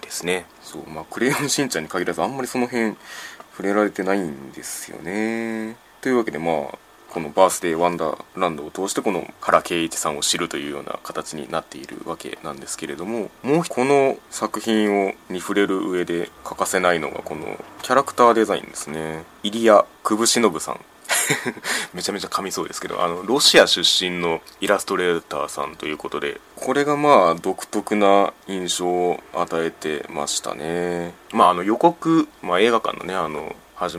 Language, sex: Japanese, male